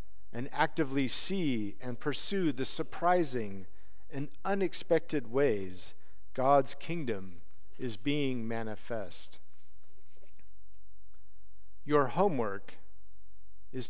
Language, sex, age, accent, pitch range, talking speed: English, male, 50-69, American, 95-140 Hz, 80 wpm